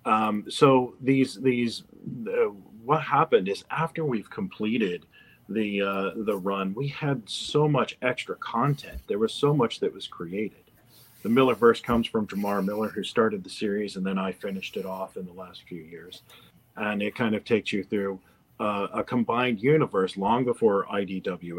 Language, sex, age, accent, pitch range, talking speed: English, male, 40-59, American, 95-125 Hz, 175 wpm